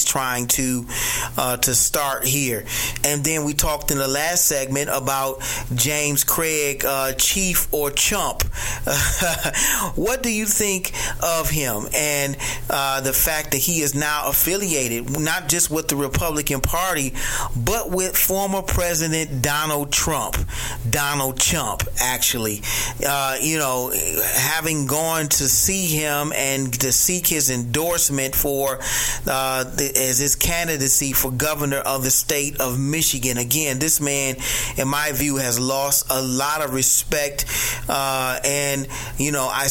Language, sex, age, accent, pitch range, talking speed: English, male, 30-49, American, 130-145 Hz, 140 wpm